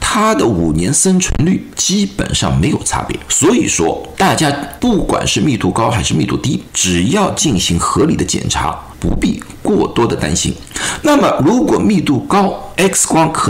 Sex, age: male, 50-69